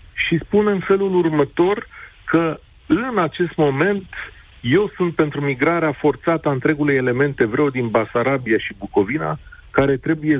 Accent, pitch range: native, 120-160 Hz